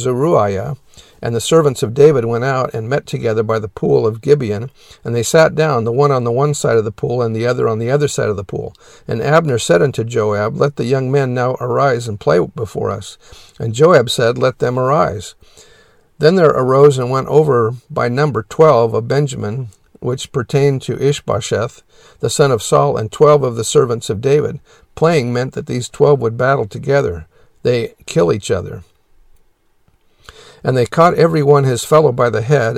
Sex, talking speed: male, 200 wpm